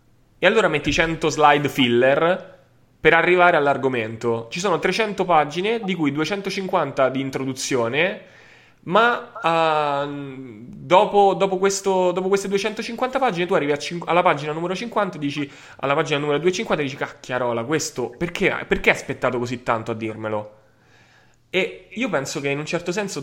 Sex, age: male, 20-39